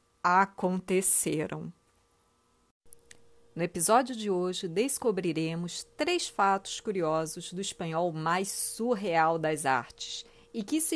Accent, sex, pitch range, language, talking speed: Brazilian, female, 175-250 Hz, Portuguese, 100 wpm